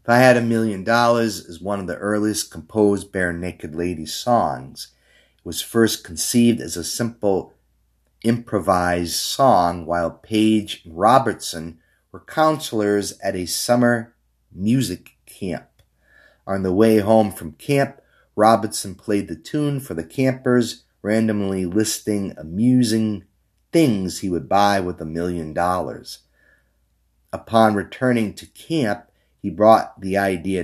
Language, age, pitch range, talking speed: English, 30-49, 85-110 Hz, 135 wpm